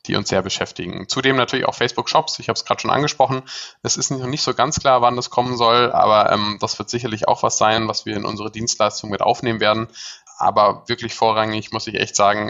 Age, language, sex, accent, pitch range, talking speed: 20-39, German, male, German, 105-125 Hz, 230 wpm